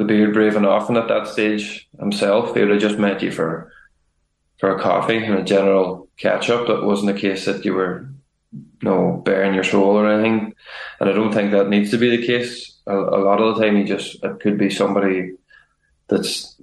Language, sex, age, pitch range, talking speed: English, male, 20-39, 100-110 Hz, 220 wpm